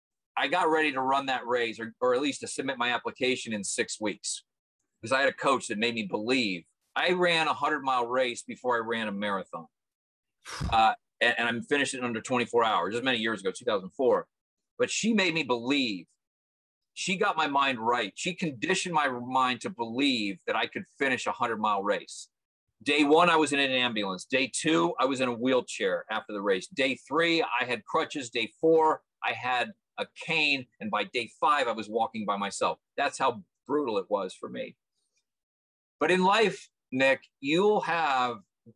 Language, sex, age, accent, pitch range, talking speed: English, male, 40-59, American, 120-170 Hz, 195 wpm